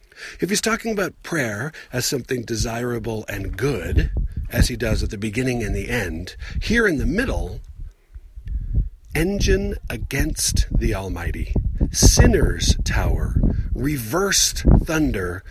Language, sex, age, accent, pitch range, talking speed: English, male, 50-69, American, 85-130 Hz, 120 wpm